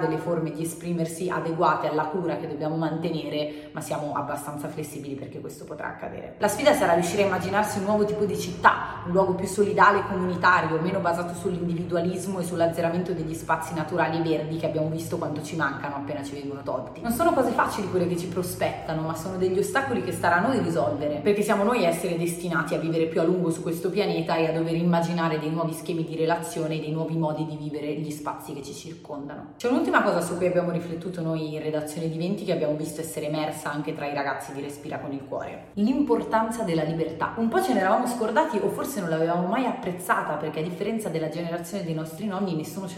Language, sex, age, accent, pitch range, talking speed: Italian, female, 30-49, native, 155-200 Hz, 220 wpm